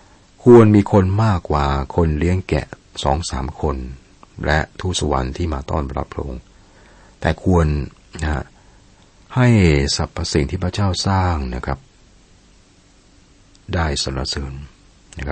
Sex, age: male, 60-79